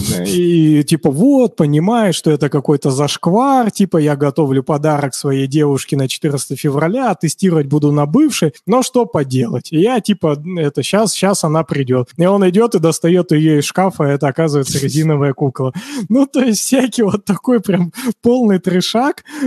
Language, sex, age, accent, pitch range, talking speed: Russian, male, 20-39, native, 145-190 Hz, 165 wpm